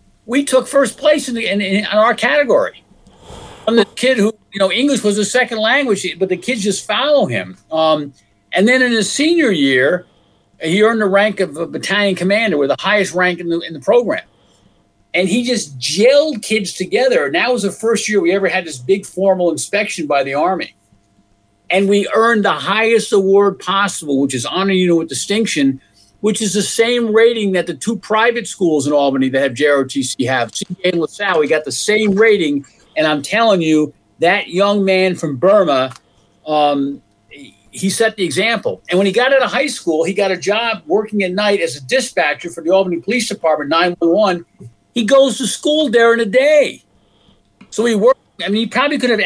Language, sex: English, male